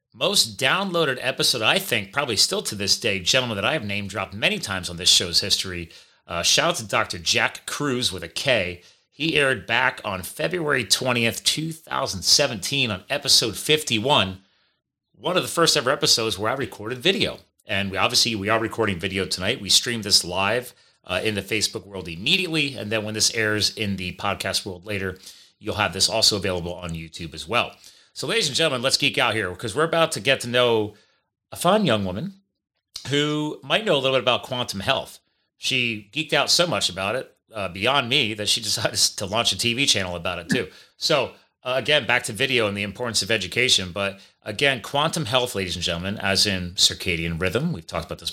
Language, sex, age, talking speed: English, male, 30-49, 200 wpm